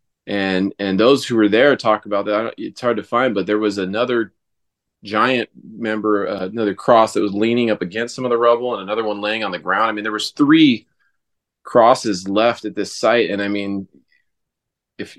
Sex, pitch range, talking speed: male, 100-120 Hz, 215 wpm